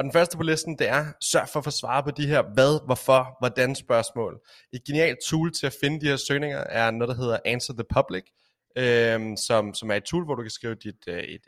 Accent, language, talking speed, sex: native, Danish, 250 wpm, male